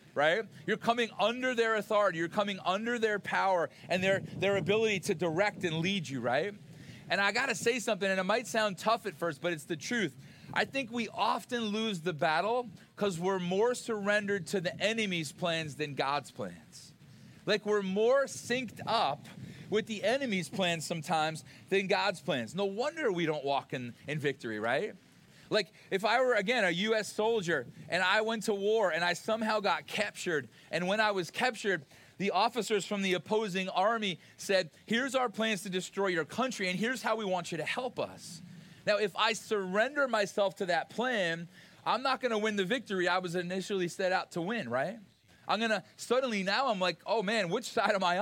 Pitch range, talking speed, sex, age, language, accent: 175-225 Hz, 200 wpm, male, 40-59, English, American